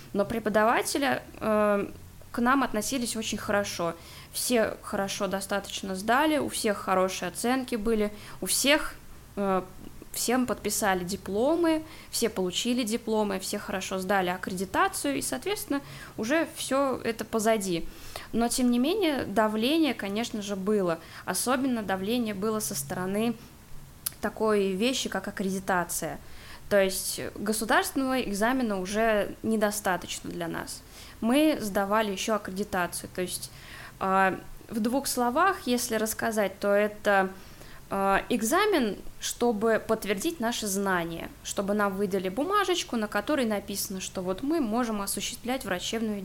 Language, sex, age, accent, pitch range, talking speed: Russian, female, 20-39, native, 195-240 Hz, 120 wpm